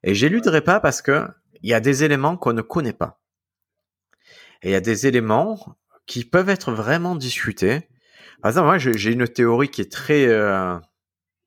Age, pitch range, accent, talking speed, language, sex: 30-49, 105-140 Hz, French, 190 wpm, French, male